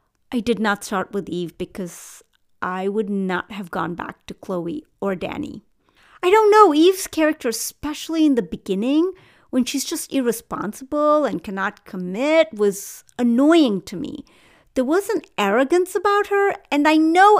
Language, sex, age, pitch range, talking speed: English, female, 40-59, 235-360 Hz, 160 wpm